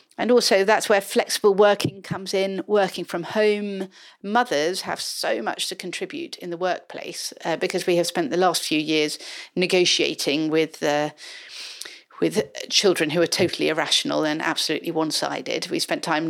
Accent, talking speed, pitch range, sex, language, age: British, 160 wpm, 160-200 Hz, female, English, 40-59